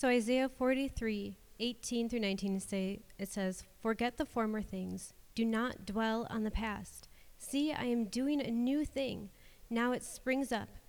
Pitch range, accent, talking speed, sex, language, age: 210-250 Hz, American, 155 wpm, female, English, 30-49